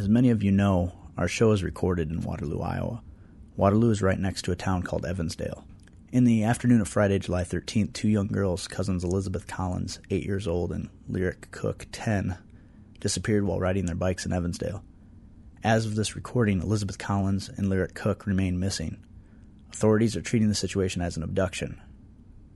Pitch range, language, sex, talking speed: 90-105 Hz, English, male, 180 wpm